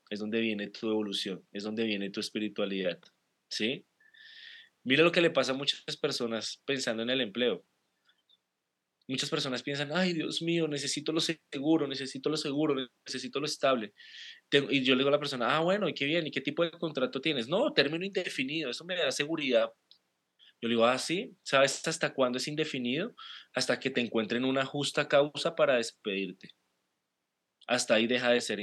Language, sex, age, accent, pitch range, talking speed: Spanish, male, 20-39, Colombian, 115-160 Hz, 180 wpm